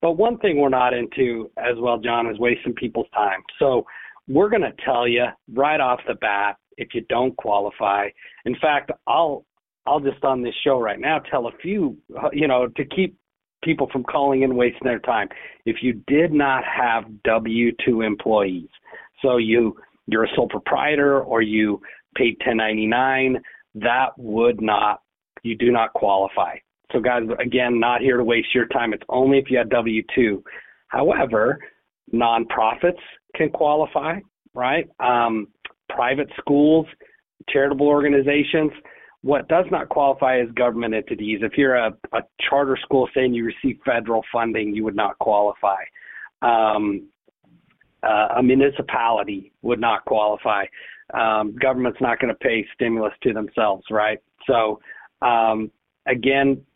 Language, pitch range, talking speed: English, 110-135 Hz, 150 wpm